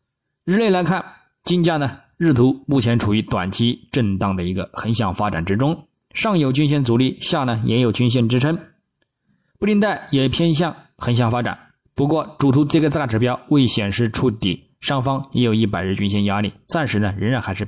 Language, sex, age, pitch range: Chinese, male, 20-39, 100-140 Hz